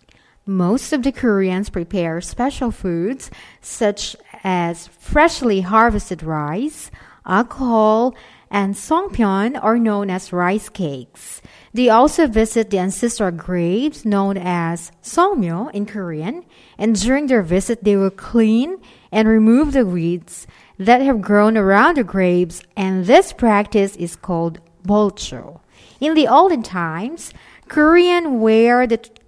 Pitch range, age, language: 185-250 Hz, 40-59, Korean